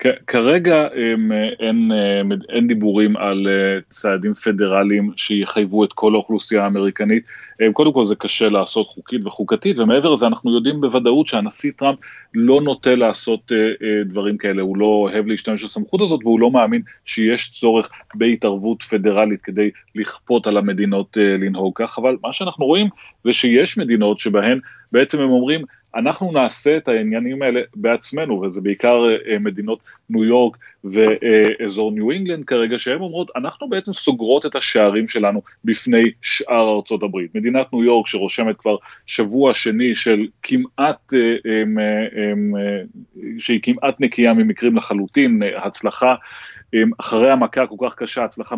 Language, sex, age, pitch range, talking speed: Hebrew, male, 30-49, 105-125 Hz, 135 wpm